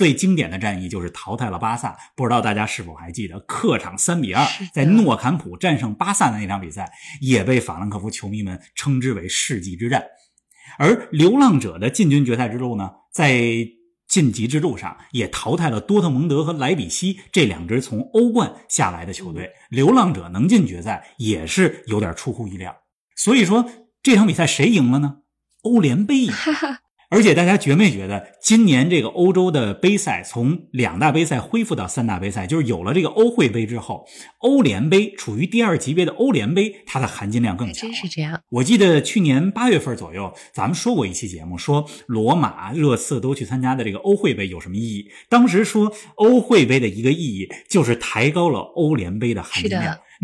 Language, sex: Chinese, male